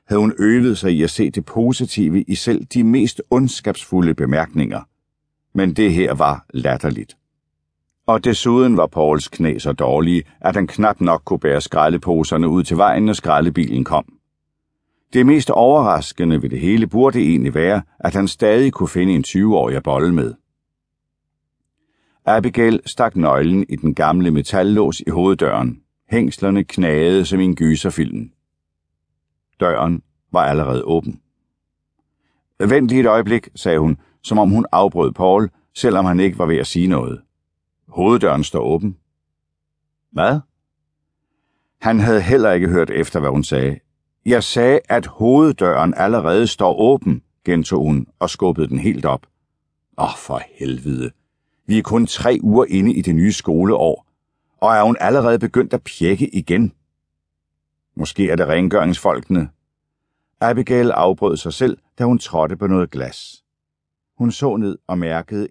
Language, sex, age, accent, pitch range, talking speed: Danish, male, 60-79, native, 75-110 Hz, 150 wpm